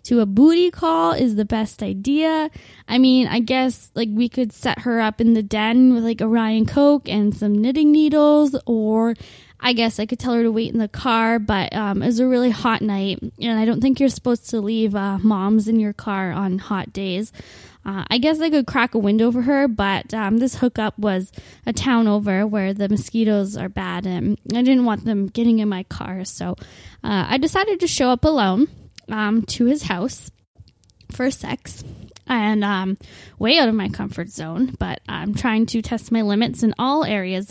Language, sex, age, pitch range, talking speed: English, female, 10-29, 210-255 Hz, 205 wpm